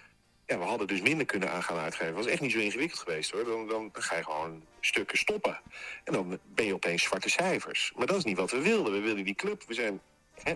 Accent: Dutch